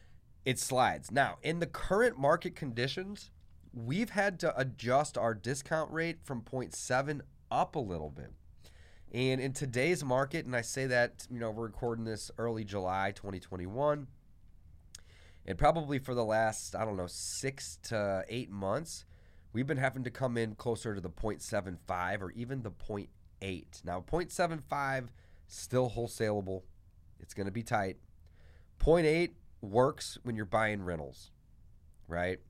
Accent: American